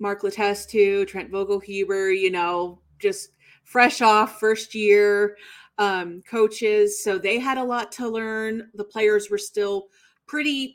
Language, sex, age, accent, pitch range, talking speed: English, female, 30-49, American, 200-245 Hz, 140 wpm